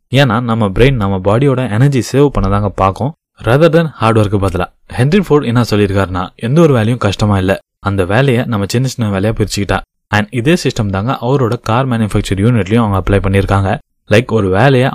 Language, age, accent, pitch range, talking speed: Tamil, 20-39, native, 105-135 Hz, 175 wpm